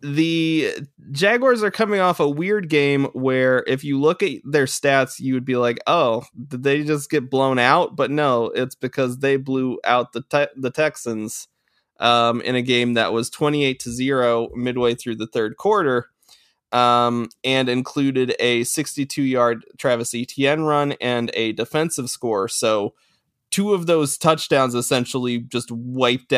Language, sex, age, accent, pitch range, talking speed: English, male, 20-39, American, 115-145 Hz, 155 wpm